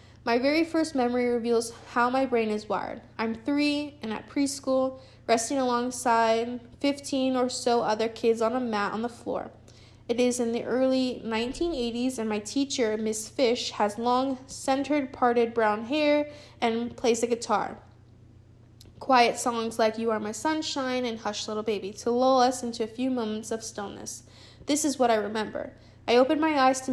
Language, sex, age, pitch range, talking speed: English, female, 10-29, 220-265 Hz, 175 wpm